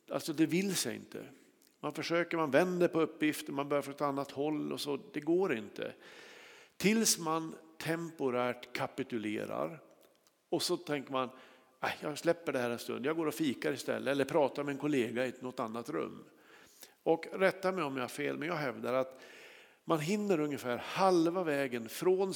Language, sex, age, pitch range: Swedish, male, 50-69, 135-180 Hz